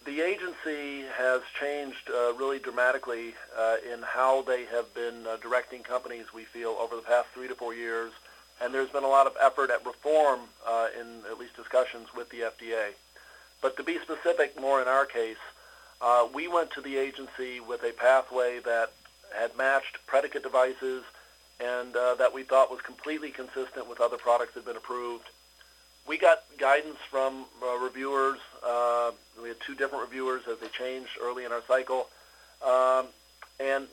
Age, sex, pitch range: 40-59, male, 120-140 Hz